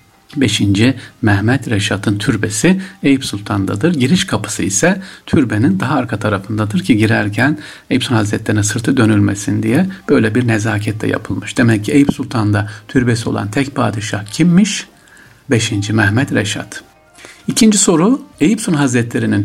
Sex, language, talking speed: male, Turkish, 135 wpm